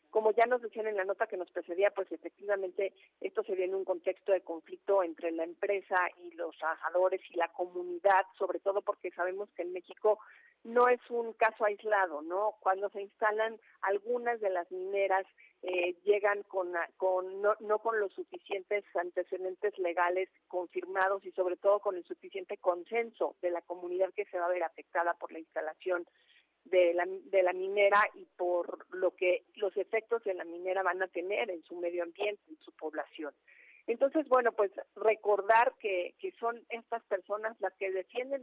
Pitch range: 180-215 Hz